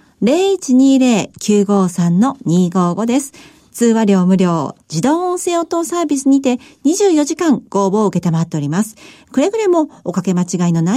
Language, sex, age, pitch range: Japanese, female, 40-59, 185-290 Hz